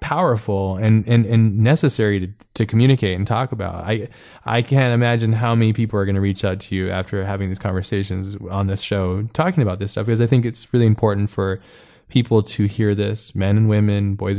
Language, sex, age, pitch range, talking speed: English, male, 20-39, 100-115 Hz, 215 wpm